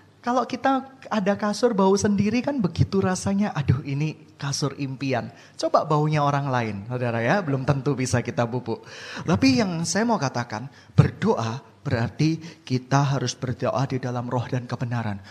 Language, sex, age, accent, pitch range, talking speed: Indonesian, male, 20-39, native, 135-230 Hz, 155 wpm